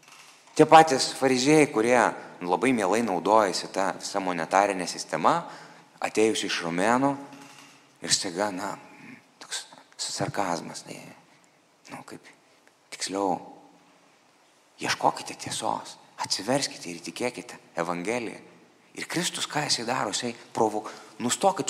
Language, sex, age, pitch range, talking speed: English, male, 30-49, 110-140 Hz, 100 wpm